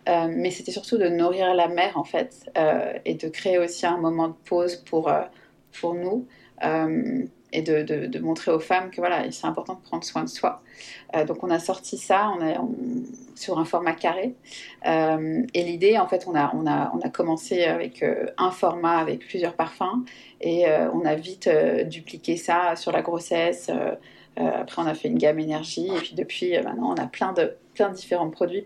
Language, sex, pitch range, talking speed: French, female, 165-190 Hz, 220 wpm